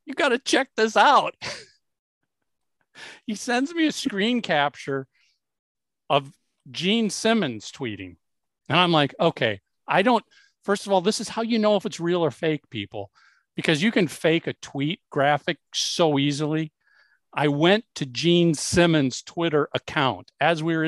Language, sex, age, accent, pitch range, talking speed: English, male, 50-69, American, 140-210 Hz, 160 wpm